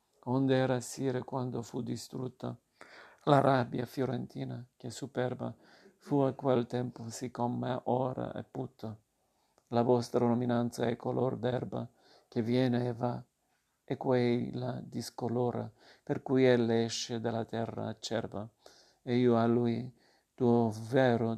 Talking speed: 125 wpm